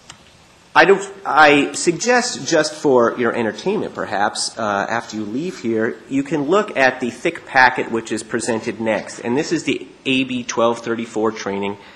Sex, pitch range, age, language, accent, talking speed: male, 110-135 Hz, 30-49, English, American, 155 wpm